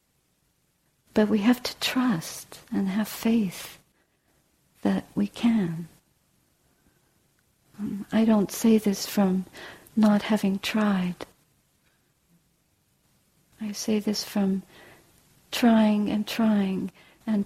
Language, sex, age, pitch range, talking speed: English, female, 50-69, 200-260 Hz, 95 wpm